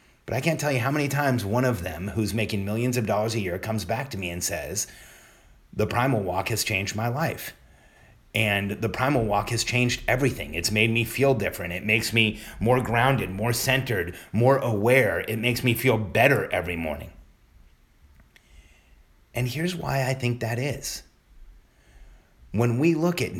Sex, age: male, 30-49